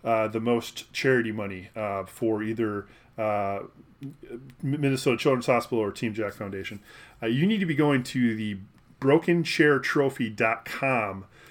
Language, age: English, 20-39